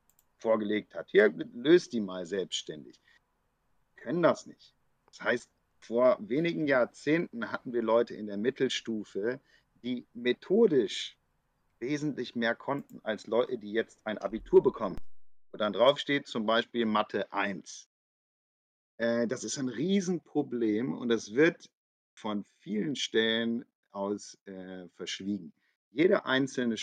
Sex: male